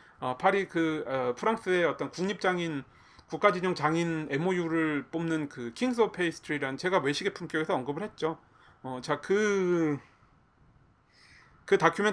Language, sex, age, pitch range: Korean, male, 30-49, 130-180 Hz